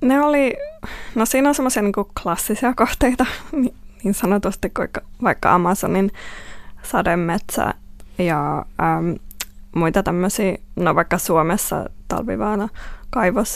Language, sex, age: Finnish, female, 20-39